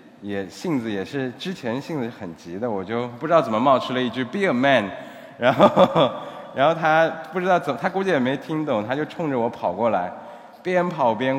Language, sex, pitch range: Chinese, male, 110-145 Hz